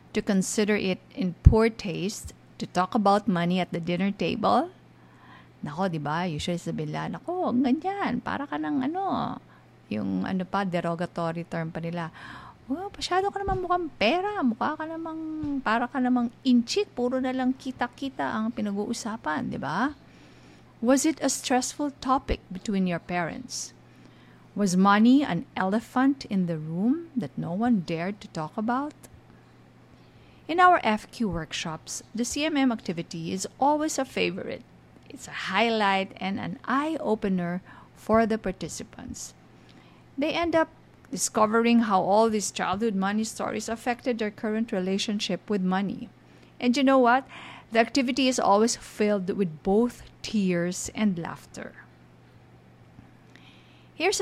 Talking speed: 140 wpm